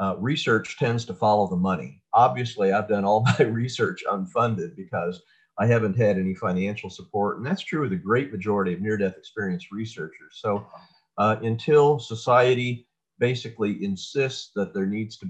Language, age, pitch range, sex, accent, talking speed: English, 50-69, 95-125 Hz, male, American, 165 wpm